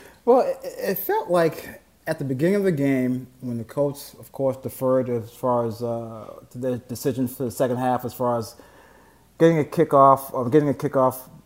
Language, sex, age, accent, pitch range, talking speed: English, male, 30-49, American, 130-155 Hz, 190 wpm